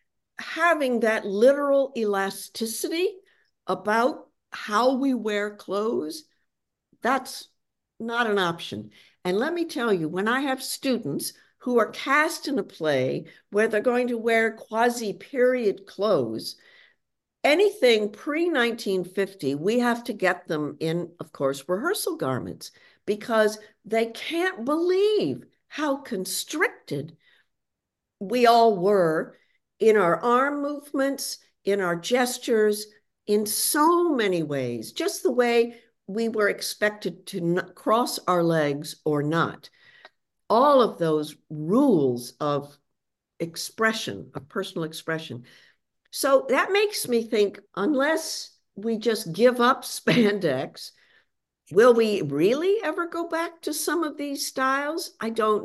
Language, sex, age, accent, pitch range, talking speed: English, female, 60-79, American, 195-280 Hz, 120 wpm